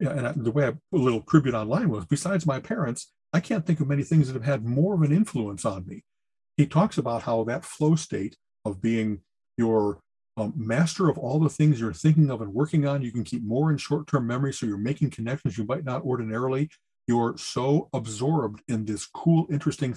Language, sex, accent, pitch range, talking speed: English, male, American, 115-150 Hz, 220 wpm